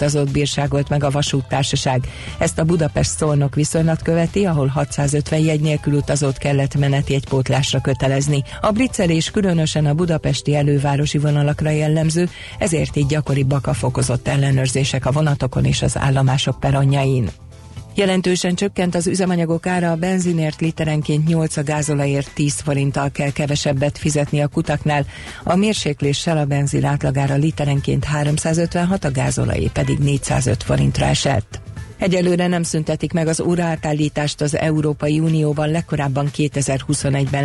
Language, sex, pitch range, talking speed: Hungarian, female, 140-155 Hz, 130 wpm